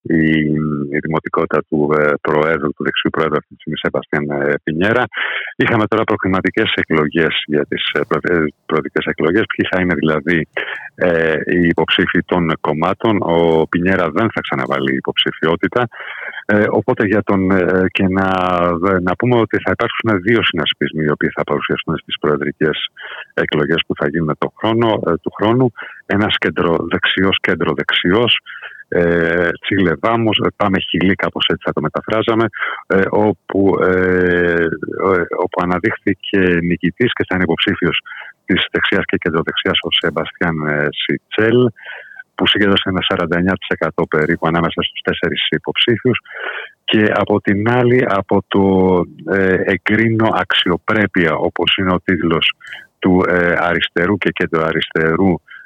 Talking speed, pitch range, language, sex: 135 wpm, 80-100 Hz, Greek, male